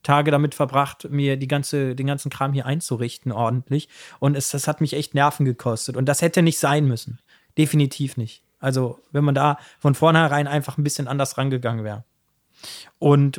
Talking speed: 185 wpm